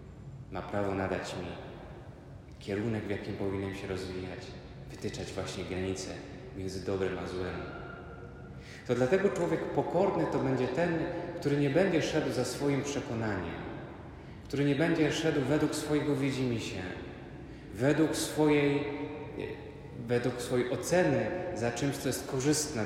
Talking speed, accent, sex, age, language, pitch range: 125 wpm, native, male, 30-49, Polish, 110-155 Hz